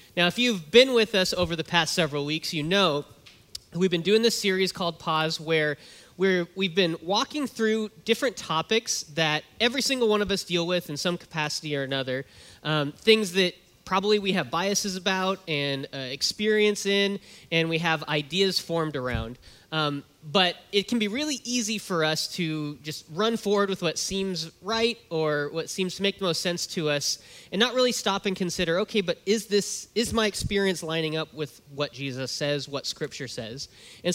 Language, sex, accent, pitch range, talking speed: English, male, American, 145-195 Hz, 190 wpm